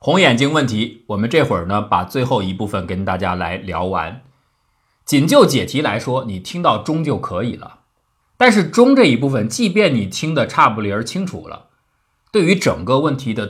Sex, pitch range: male, 105-145 Hz